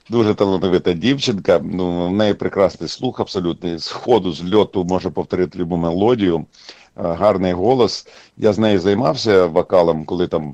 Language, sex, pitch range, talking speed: Russian, male, 85-115 Hz, 140 wpm